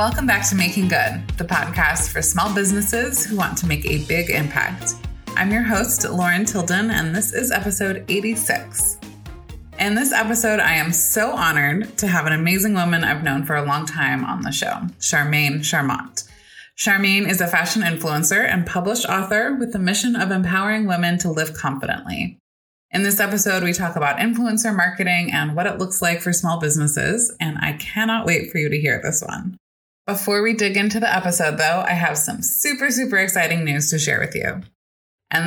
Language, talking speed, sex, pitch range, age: English, 190 wpm, female, 155-205 Hz, 20-39